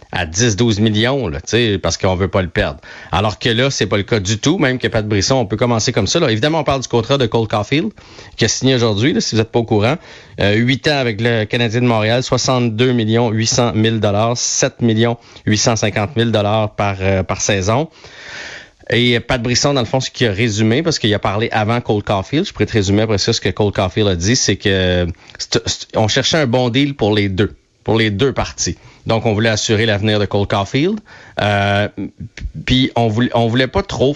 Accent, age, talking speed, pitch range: Canadian, 30-49, 225 wpm, 105-125 Hz